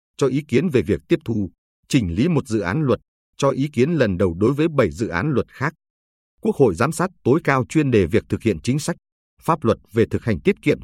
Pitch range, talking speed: 100-150 Hz, 250 wpm